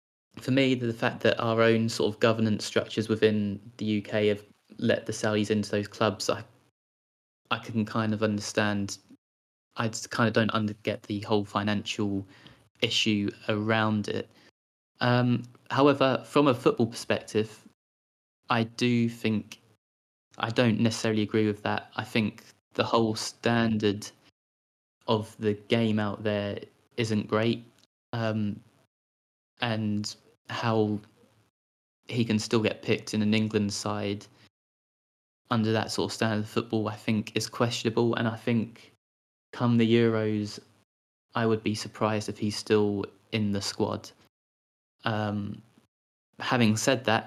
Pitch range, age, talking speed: 105-115 Hz, 20-39, 140 wpm